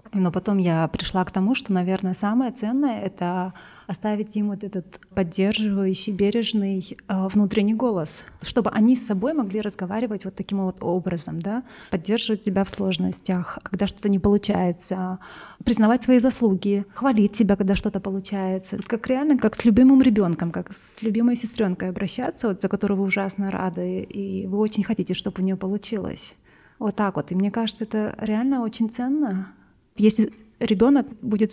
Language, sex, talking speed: Russian, female, 160 wpm